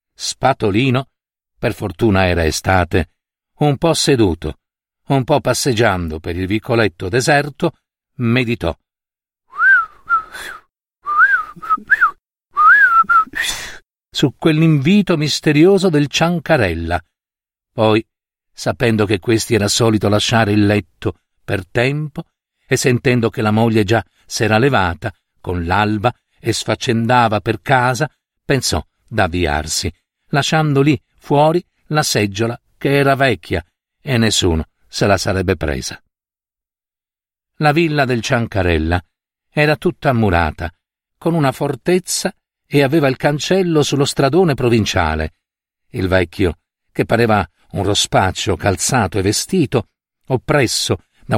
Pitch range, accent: 100-145 Hz, native